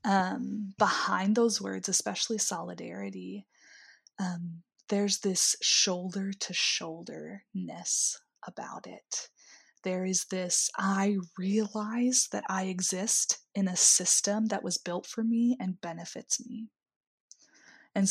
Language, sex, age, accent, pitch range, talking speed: English, female, 20-39, American, 185-220 Hz, 115 wpm